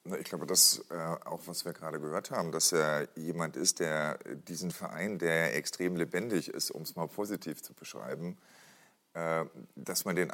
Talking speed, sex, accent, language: 180 wpm, male, German, German